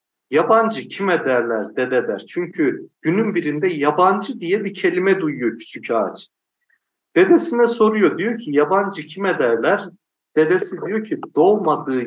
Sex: male